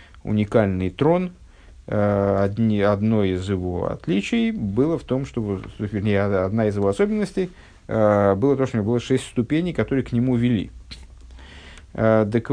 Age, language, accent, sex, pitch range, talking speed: 50-69, Russian, native, male, 100-135 Hz, 140 wpm